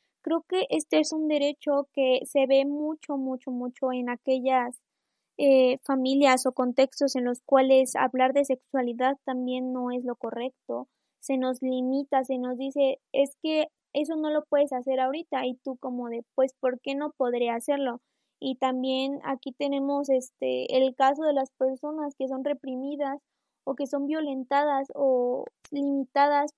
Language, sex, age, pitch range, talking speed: Spanish, female, 20-39, 260-285 Hz, 165 wpm